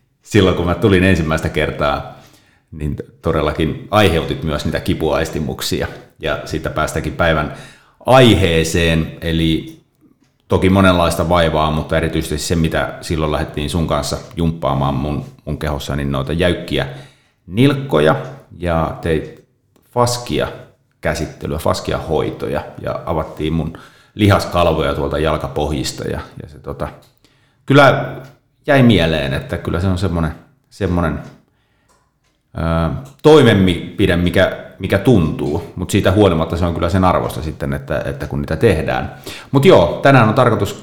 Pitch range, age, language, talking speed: 80-100 Hz, 30-49, Finnish, 125 wpm